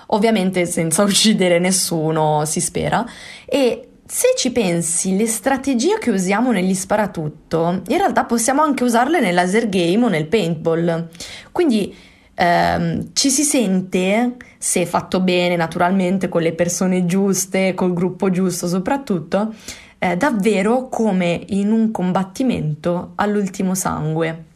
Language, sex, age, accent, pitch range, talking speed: Italian, female, 20-39, native, 175-220 Hz, 125 wpm